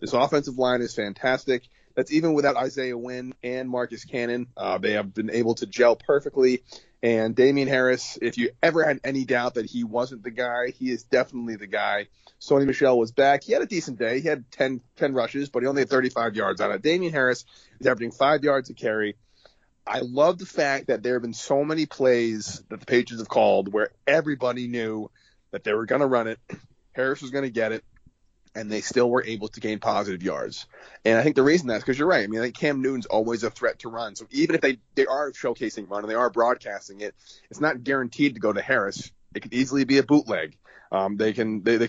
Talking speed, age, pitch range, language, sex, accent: 235 wpm, 30-49, 115-135 Hz, English, male, American